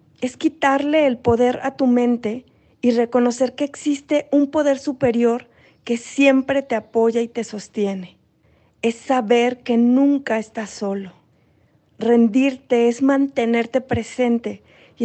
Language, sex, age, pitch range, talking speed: Spanish, female, 40-59, 220-255 Hz, 130 wpm